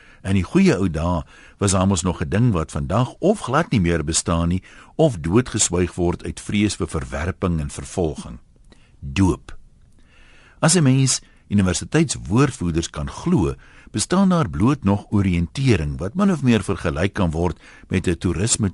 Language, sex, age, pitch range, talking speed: Dutch, male, 60-79, 85-115 Hz, 155 wpm